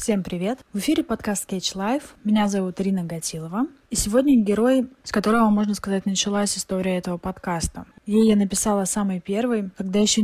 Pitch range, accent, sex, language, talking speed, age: 185-220 Hz, native, female, Russian, 170 wpm, 20-39